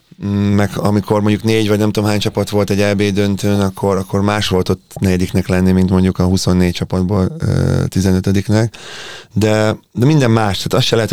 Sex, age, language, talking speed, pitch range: male, 30-49, Hungarian, 180 wpm, 95-105 Hz